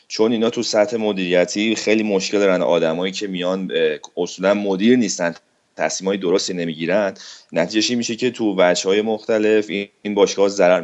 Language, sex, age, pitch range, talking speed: Persian, male, 30-49, 90-105 Hz, 160 wpm